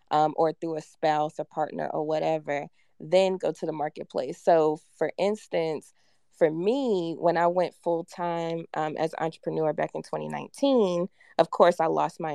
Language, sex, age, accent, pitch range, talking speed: English, female, 20-39, American, 155-185 Hz, 160 wpm